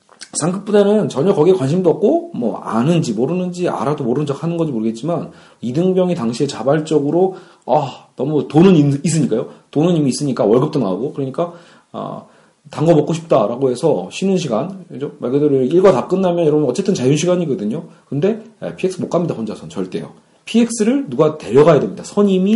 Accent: native